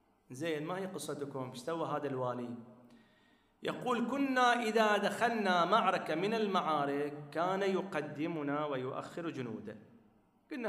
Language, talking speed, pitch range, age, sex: Arabic, 100 wpm, 145-205 Hz, 40-59, male